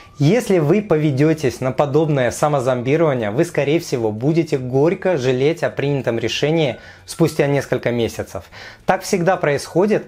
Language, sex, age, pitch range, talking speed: Russian, male, 20-39, 125-175 Hz, 125 wpm